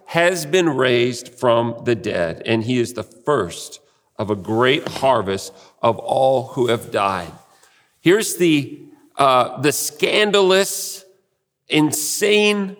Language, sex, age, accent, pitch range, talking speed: English, male, 50-69, American, 130-185 Hz, 120 wpm